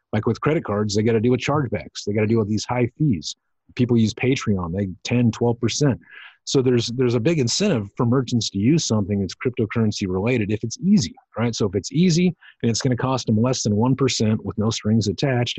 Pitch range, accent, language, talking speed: 105-125 Hz, American, English, 225 wpm